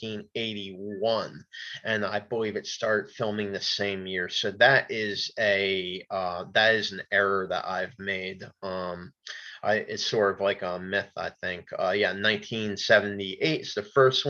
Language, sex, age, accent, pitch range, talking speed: English, male, 30-49, American, 105-135 Hz, 160 wpm